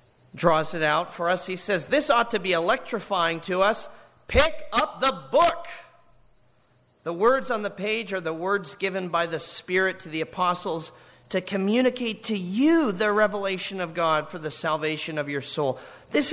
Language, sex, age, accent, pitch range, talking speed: English, male, 40-59, American, 155-210 Hz, 175 wpm